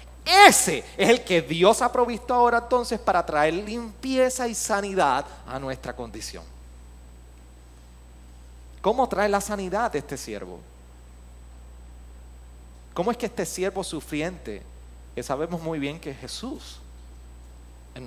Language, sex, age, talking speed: Spanish, male, 30-49, 125 wpm